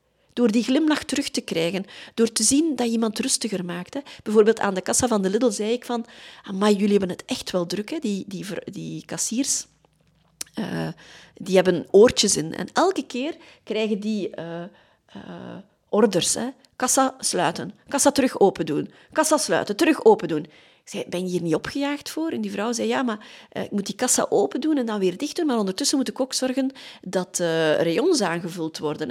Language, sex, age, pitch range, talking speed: Dutch, female, 30-49, 185-260 Hz, 205 wpm